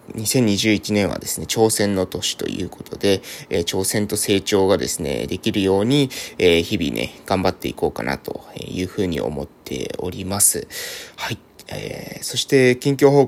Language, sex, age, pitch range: Japanese, male, 20-39, 95-135 Hz